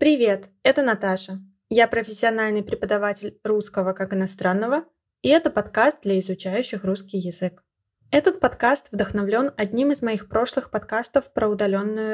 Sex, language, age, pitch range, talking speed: female, Russian, 20-39, 195-245 Hz, 130 wpm